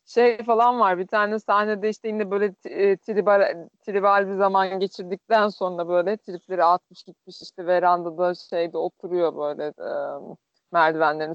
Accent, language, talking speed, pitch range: native, Turkish, 155 wpm, 170-220 Hz